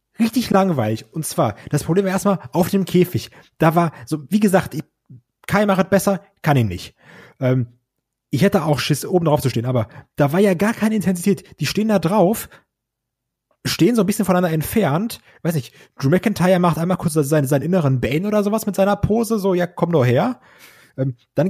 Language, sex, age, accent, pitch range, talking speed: German, male, 30-49, German, 140-205 Hz, 200 wpm